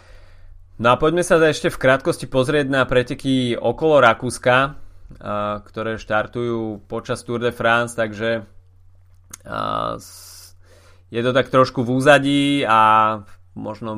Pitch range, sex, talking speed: 100-120 Hz, male, 115 wpm